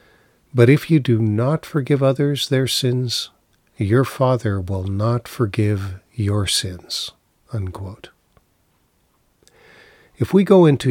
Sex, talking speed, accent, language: male, 115 wpm, American, English